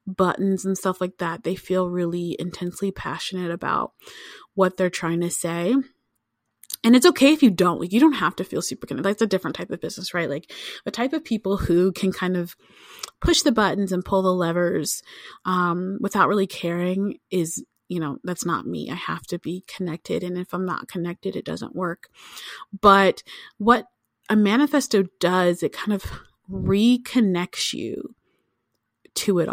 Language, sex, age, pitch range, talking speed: English, female, 30-49, 175-215 Hz, 180 wpm